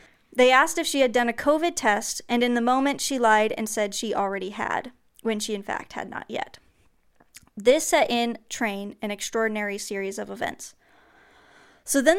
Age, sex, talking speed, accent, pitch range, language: 20-39, female, 185 wpm, American, 220-260 Hz, English